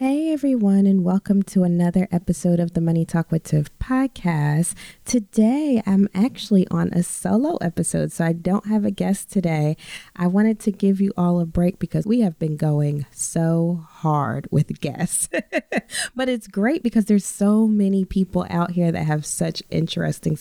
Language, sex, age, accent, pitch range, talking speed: English, female, 20-39, American, 170-220 Hz, 175 wpm